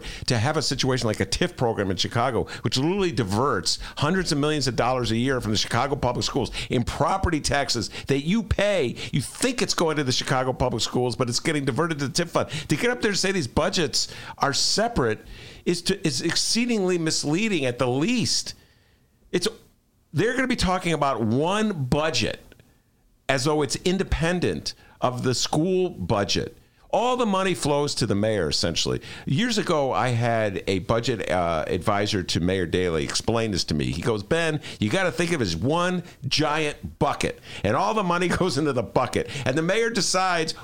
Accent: American